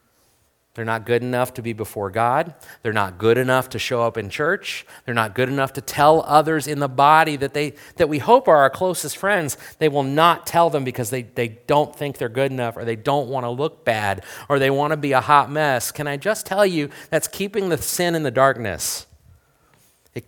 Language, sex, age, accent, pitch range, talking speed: English, male, 40-59, American, 110-150 Hz, 220 wpm